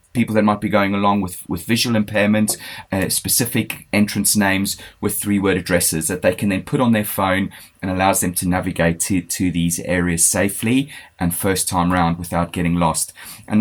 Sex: male